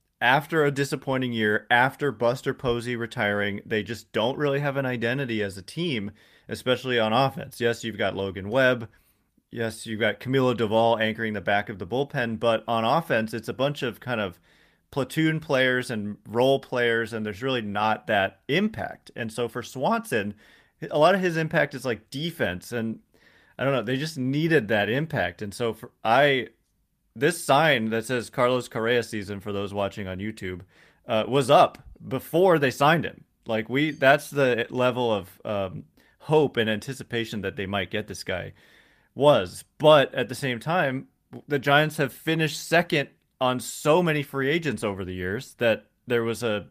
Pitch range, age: 110-135 Hz, 30-49